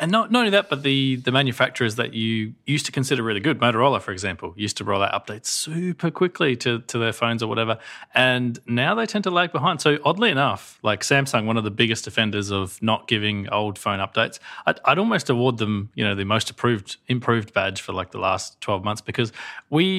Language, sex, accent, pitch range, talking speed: English, male, Australian, 105-140 Hz, 225 wpm